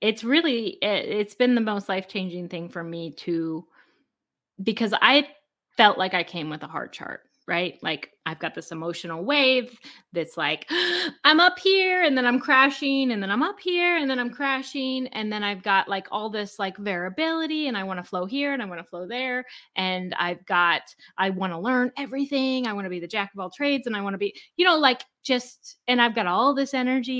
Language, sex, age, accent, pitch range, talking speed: English, female, 20-39, American, 185-260 Hz, 220 wpm